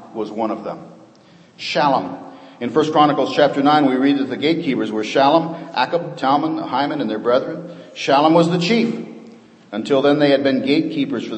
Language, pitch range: English, 120-170 Hz